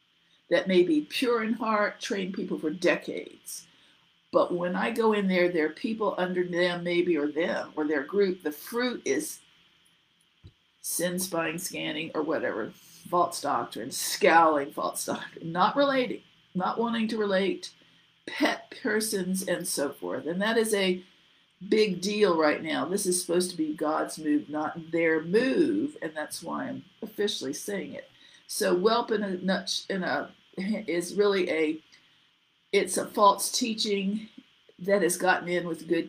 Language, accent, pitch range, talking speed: English, American, 165-215 Hz, 160 wpm